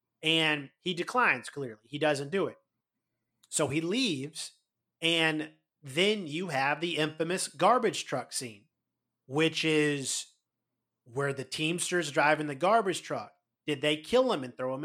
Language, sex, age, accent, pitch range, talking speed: English, male, 30-49, American, 135-175 Hz, 145 wpm